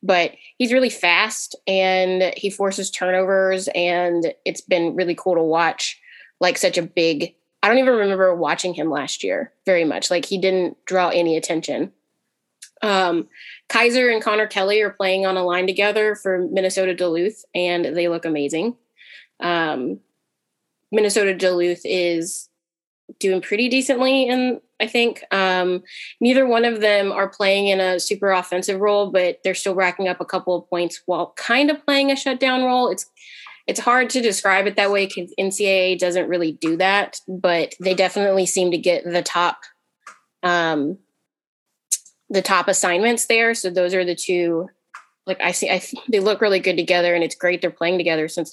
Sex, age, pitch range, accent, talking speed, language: female, 20-39, 175-205 Hz, American, 170 wpm, English